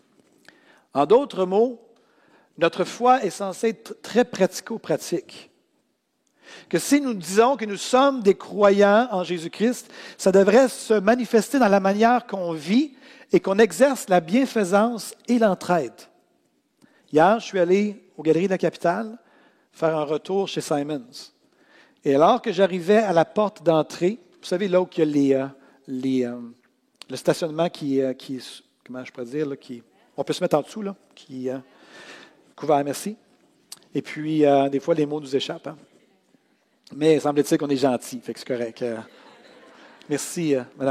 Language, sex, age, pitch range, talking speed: French, male, 50-69, 155-225 Hz, 160 wpm